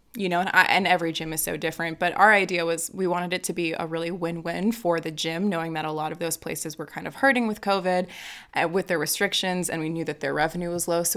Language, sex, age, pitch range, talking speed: English, female, 20-39, 160-195 Hz, 275 wpm